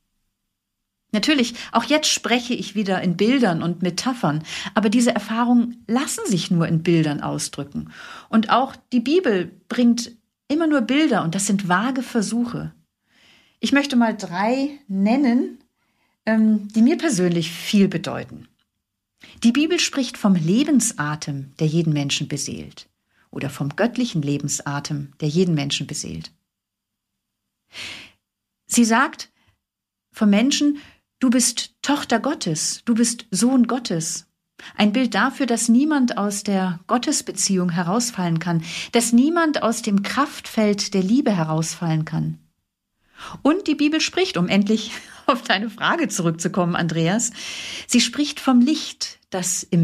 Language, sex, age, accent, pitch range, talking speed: German, female, 40-59, German, 170-245 Hz, 130 wpm